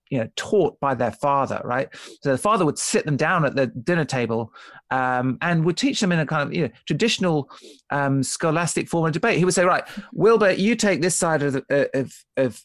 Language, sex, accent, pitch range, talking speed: English, male, British, 135-190 Hz, 230 wpm